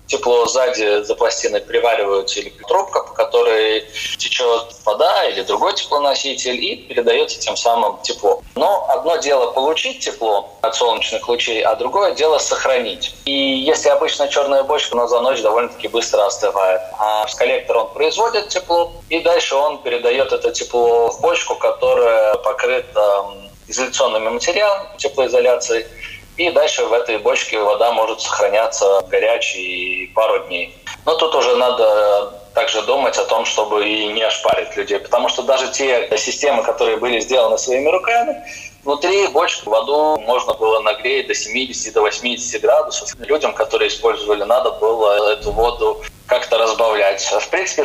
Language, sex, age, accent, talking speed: Russian, male, 20-39, native, 145 wpm